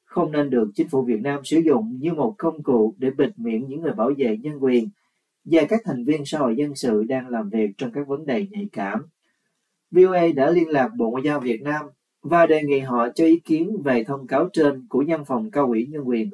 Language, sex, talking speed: Vietnamese, male, 240 wpm